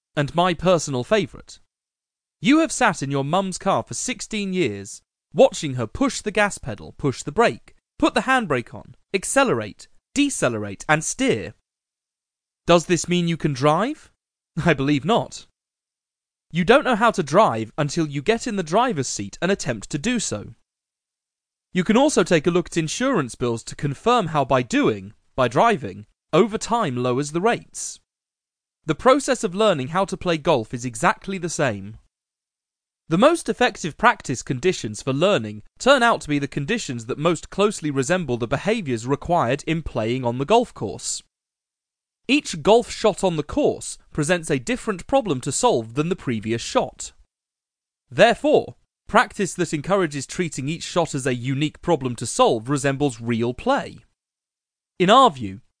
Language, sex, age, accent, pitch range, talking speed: English, male, 30-49, British, 130-210 Hz, 165 wpm